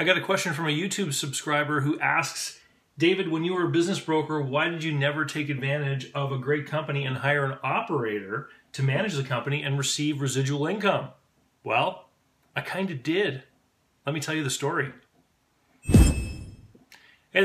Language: English